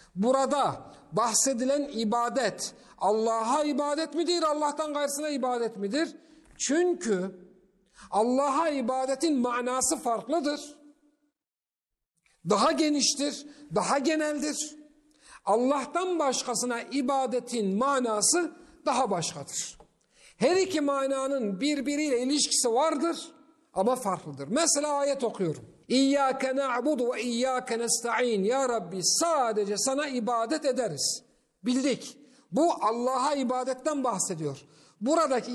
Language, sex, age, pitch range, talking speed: Turkish, male, 50-69, 225-300 Hz, 90 wpm